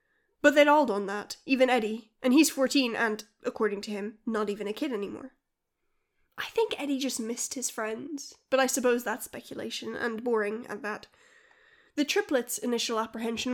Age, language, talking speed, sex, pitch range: 10-29, English, 175 wpm, female, 225-305 Hz